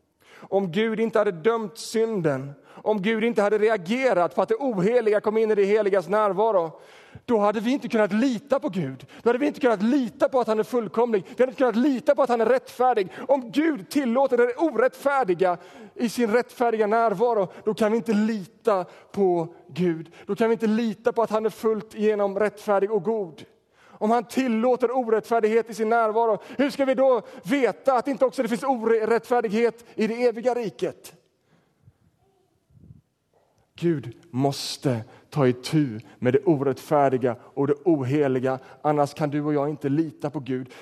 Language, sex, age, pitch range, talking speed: Swedish, male, 30-49, 165-240 Hz, 180 wpm